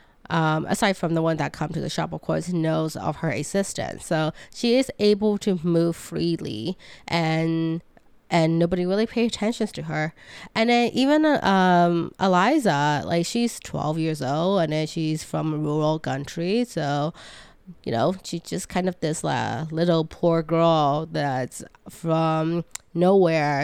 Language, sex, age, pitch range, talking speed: English, female, 20-39, 155-195 Hz, 160 wpm